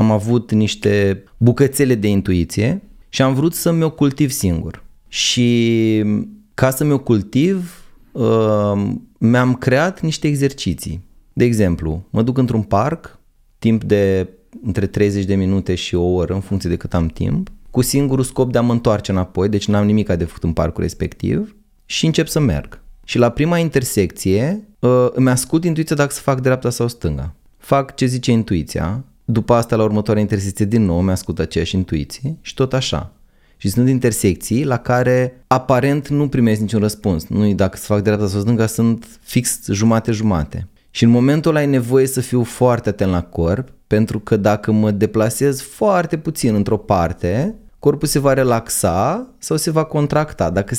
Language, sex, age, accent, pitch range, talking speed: Romanian, male, 30-49, native, 100-135 Hz, 170 wpm